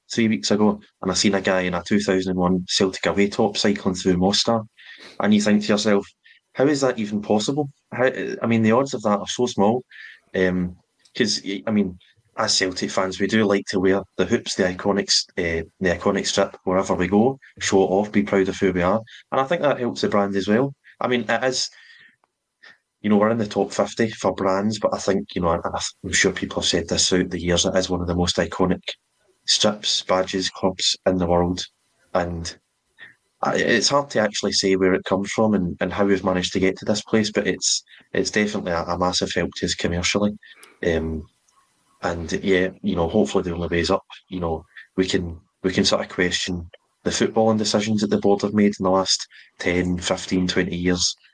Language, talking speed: English, 220 wpm